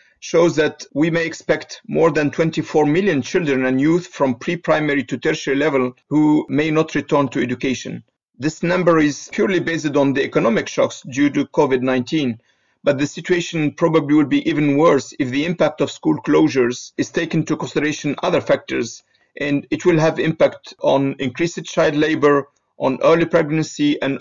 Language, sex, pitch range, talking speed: English, male, 140-165 Hz, 170 wpm